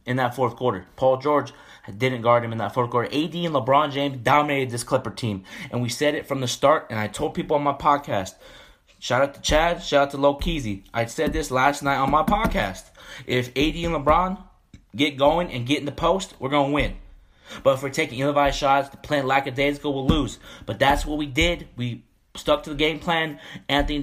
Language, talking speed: English, 220 wpm